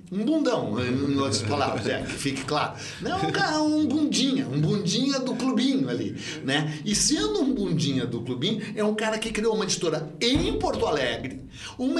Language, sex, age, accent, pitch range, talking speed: English, male, 60-79, Brazilian, 160-250 Hz, 190 wpm